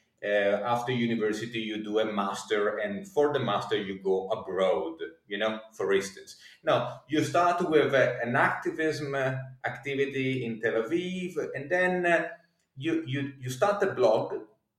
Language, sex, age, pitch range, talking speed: Italian, male, 30-49, 120-155 Hz, 155 wpm